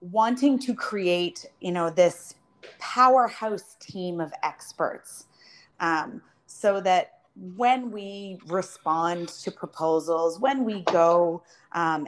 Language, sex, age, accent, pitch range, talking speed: English, female, 30-49, American, 170-200 Hz, 110 wpm